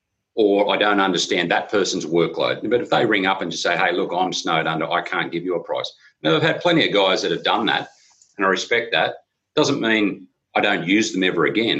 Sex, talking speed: male, 245 wpm